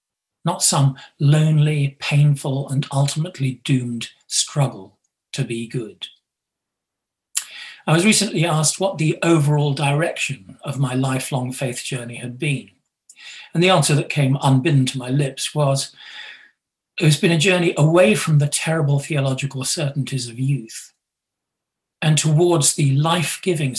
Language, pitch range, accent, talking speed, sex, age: English, 130-160 Hz, British, 130 wpm, male, 50-69